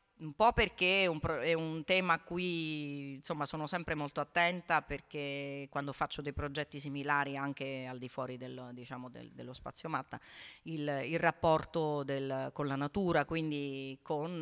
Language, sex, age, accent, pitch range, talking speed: Italian, female, 40-59, native, 145-175 Hz, 155 wpm